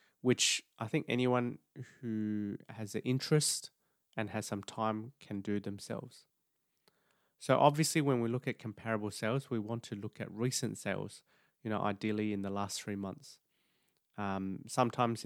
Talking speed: 155 wpm